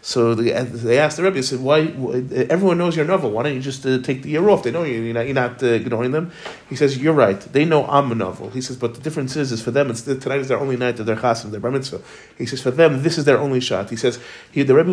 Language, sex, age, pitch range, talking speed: English, male, 30-49, 125-160 Hz, 315 wpm